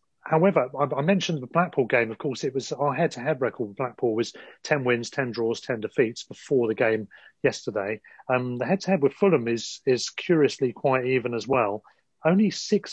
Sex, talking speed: male, 185 wpm